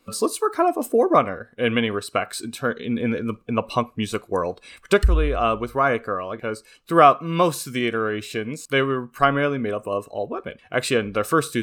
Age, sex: 20-39, male